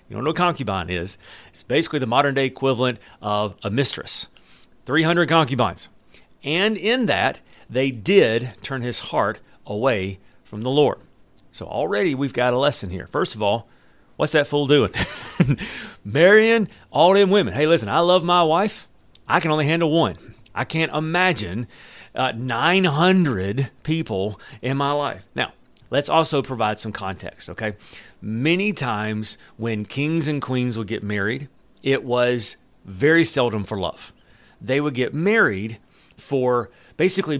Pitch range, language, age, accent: 110-150 Hz, English, 40-59, American